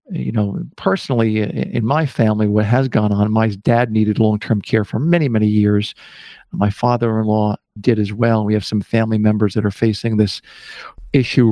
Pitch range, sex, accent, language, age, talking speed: 110-125 Hz, male, American, English, 50-69, 175 wpm